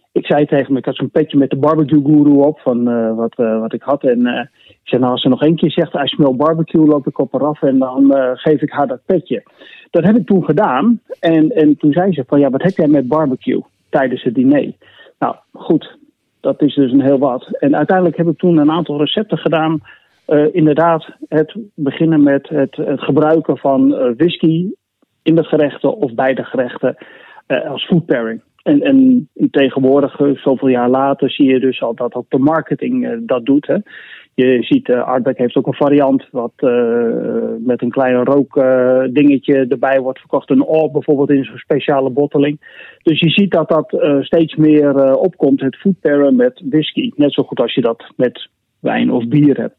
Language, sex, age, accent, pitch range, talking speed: Dutch, male, 40-59, Dutch, 135-165 Hz, 205 wpm